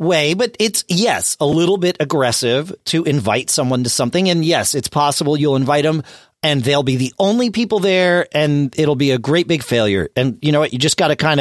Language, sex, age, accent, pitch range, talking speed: English, male, 40-59, American, 115-160 Hz, 225 wpm